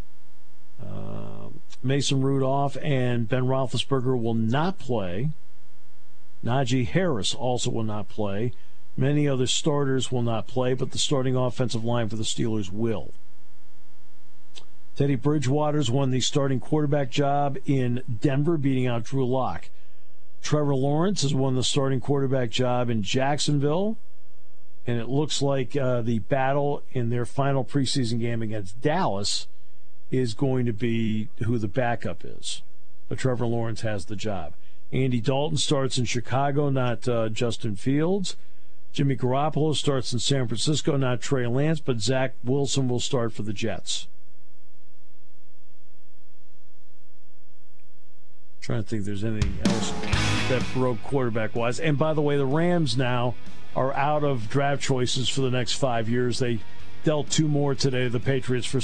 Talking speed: 145 wpm